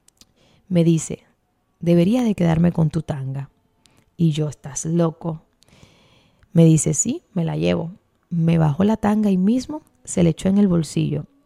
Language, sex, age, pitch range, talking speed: Spanish, female, 30-49, 160-200 Hz, 155 wpm